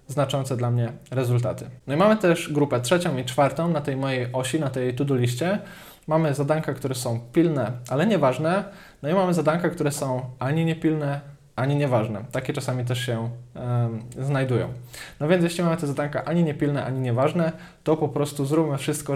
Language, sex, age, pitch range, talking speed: Polish, male, 20-39, 130-155 Hz, 180 wpm